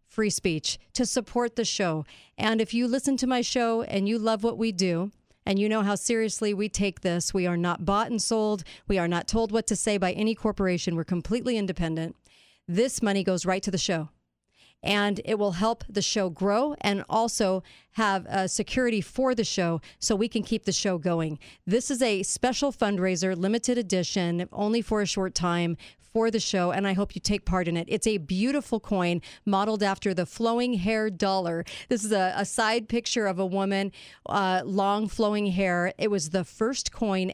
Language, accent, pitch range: English, American, 180-220 Hz